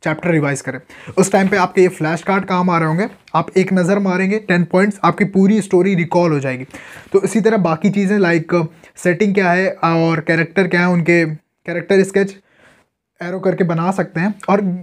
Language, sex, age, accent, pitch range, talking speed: Hindi, male, 20-39, native, 165-200 Hz, 195 wpm